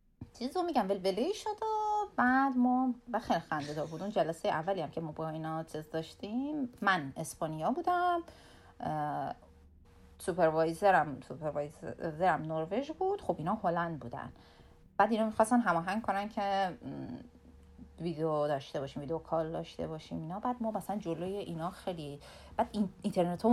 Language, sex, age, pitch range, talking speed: Persian, female, 30-49, 170-270 Hz, 145 wpm